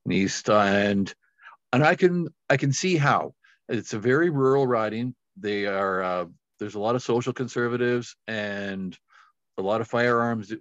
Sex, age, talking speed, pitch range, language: male, 50-69, 160 wpm, 100-125 Hz, English